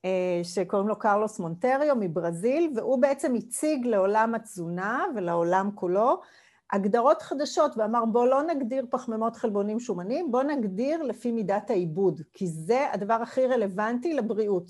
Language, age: Hebrew, 40-59